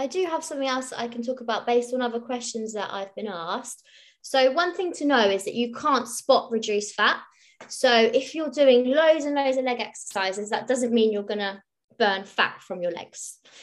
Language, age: English, 20-39